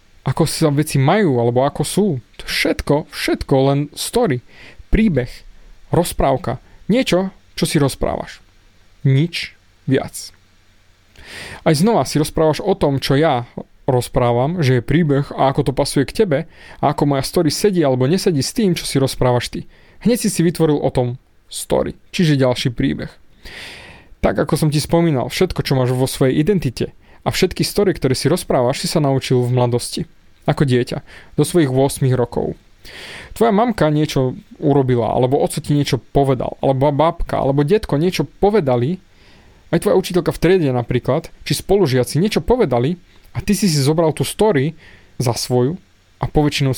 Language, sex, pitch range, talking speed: Slovak, male, 125-165 Hz, 160 wpm